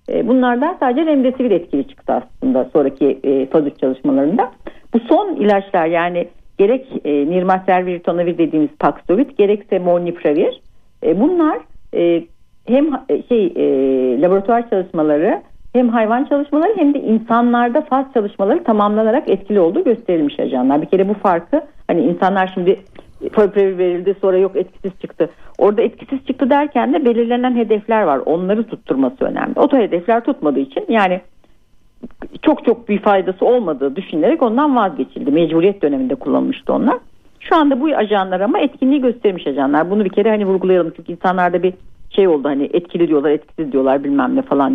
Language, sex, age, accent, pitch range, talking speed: Turkish, female, 60-79, native, 165-255 Hz, 145 wpm